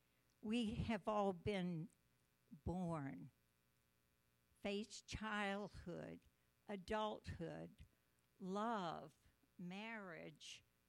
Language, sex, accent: English, female, American